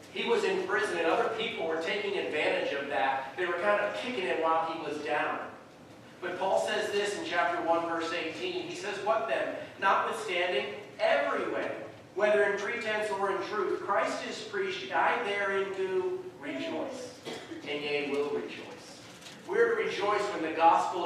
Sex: male